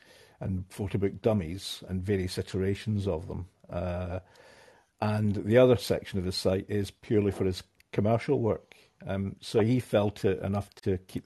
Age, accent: 50-69, British